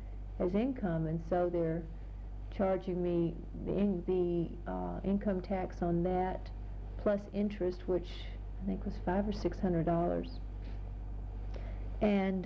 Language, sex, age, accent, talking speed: English, female, 50-69, American, 130 wpm